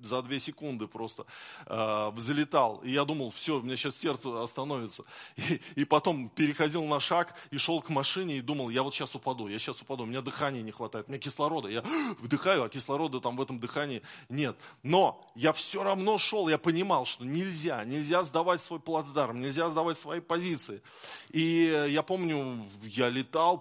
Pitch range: 120-150 Hz